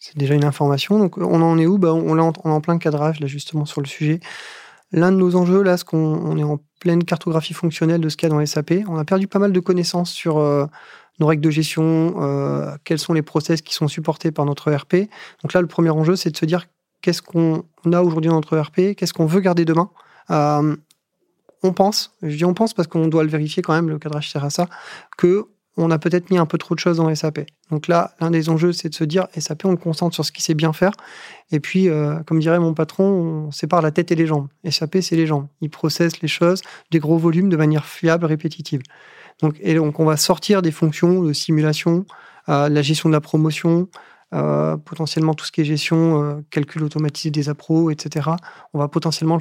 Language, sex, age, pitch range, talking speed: French, male, 30-49, 155-175 Hz, 235 wpm